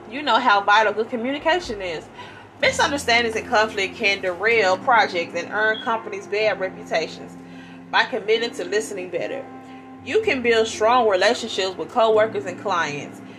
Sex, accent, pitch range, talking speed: female, American, 185-250 Hz, 145 wpm